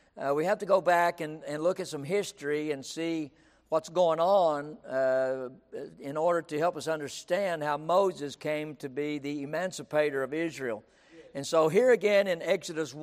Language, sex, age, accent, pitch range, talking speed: English, male, 60-79, American, 150-185 Hz, 180 wpm